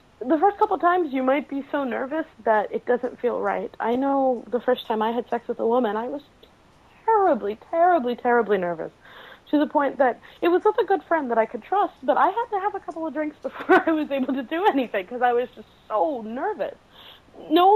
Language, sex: English, female